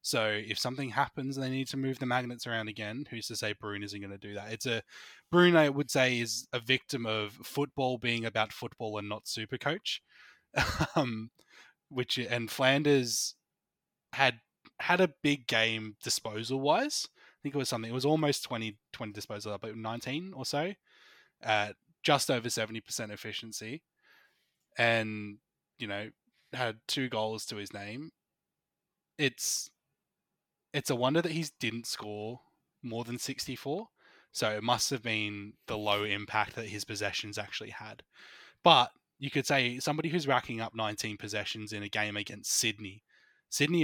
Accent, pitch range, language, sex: Australian, 105-130 Hz, English, male